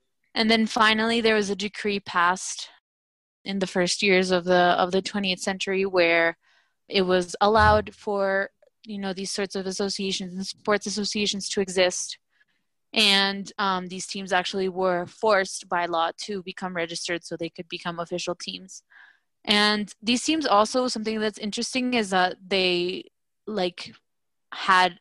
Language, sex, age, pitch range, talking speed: English, female, 20-39, 185-210 Hz, 155 wpm